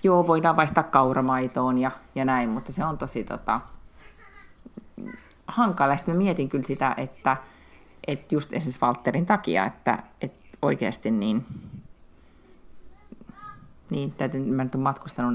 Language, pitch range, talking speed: Finnish, 130-205 Hz, 120 wpm